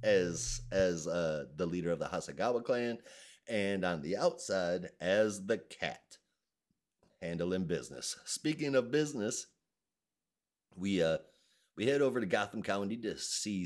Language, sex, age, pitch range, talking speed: English, male, 30-49, 90-130 Hz, 135 wpm